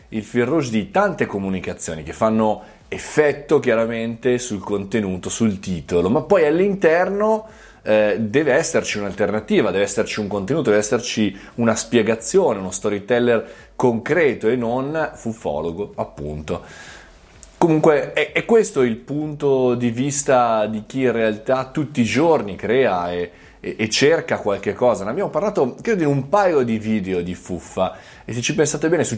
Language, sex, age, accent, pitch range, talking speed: Italian, male, 20-39, native, 110-155 Hz, 150 wpm